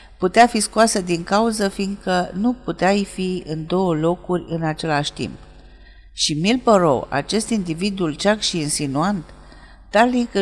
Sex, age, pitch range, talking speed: female, 50-69, 165-220 Hz, 130 wpm